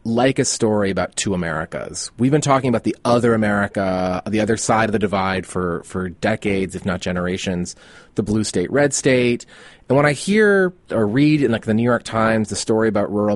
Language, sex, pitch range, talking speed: English, male, 100-125 Hz, 205 wpm